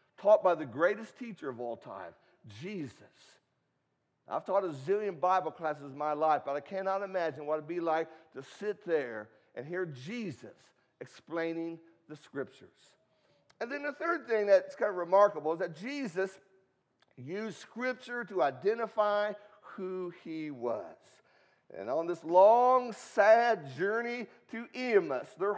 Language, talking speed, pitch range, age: English, 150 wpm, 185-260 Hz, 50-69